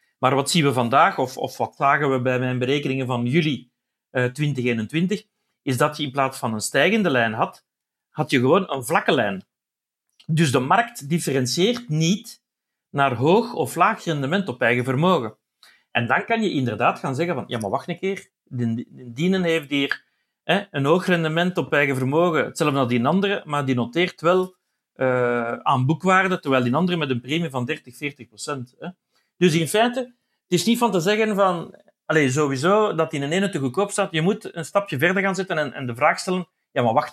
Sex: male